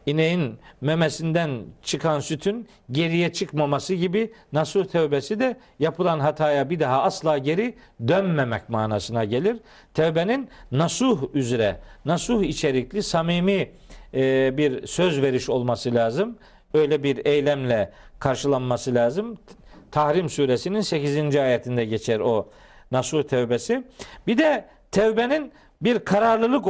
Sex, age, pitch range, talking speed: male, 50-69, 140-190 Hz, 110 wpm